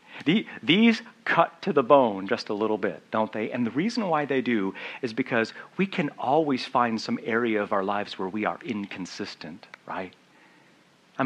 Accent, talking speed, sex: American, 185 wpm, male